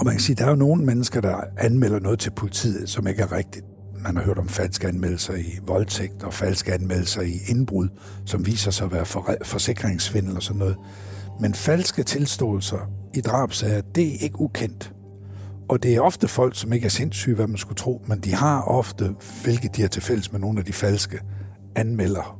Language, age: Danish, 60-79